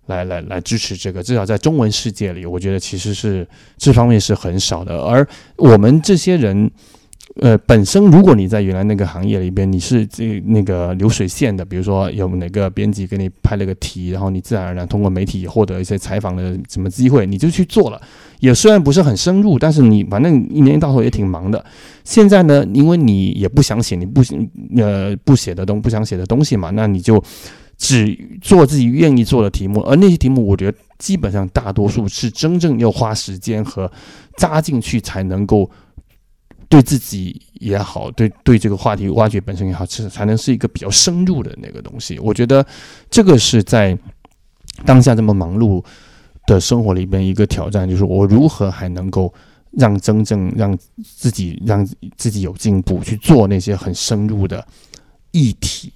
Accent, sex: Chinese, male